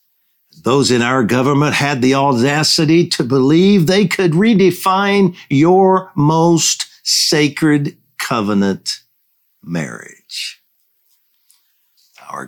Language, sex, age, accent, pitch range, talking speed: English, male, 60-79, American, 100-155 Hz, 85 wpm